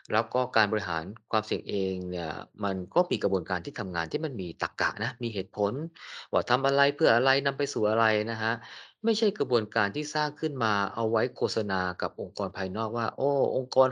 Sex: male